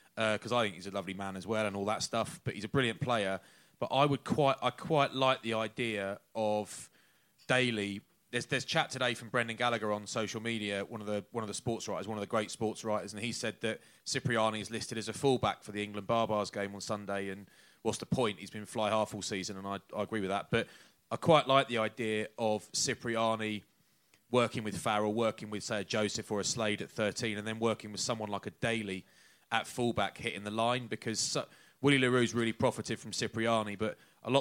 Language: English